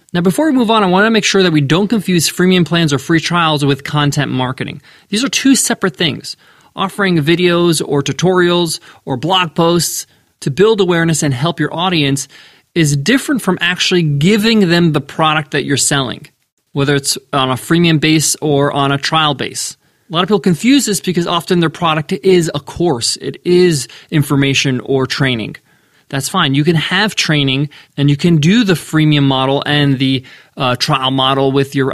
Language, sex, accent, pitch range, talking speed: English, male, American, 145-185 Hz, 190 wpm